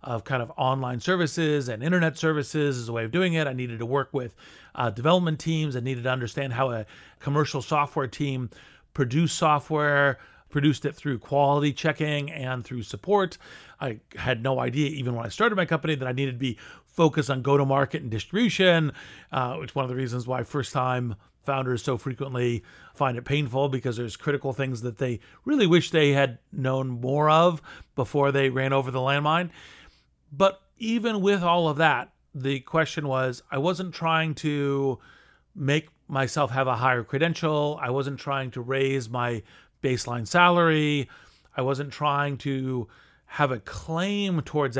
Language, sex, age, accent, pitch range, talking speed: English, male, 40-59, American, 125-155 Hz, 180 wpm